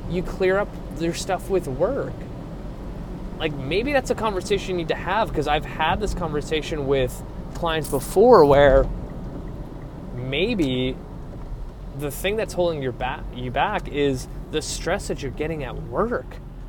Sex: male